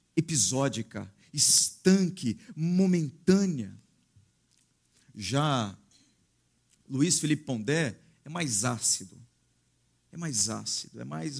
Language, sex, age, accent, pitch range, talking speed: Portuguese, male, 50-69, Brazilian, 120-180 Hz, 80 wpm